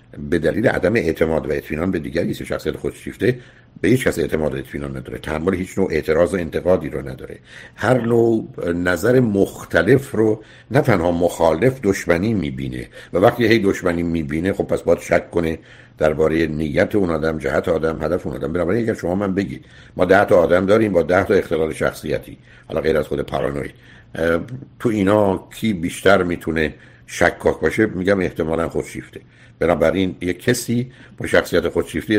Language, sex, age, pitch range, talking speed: Persian, male, 60-79, 80-110 Hz, 165 wpm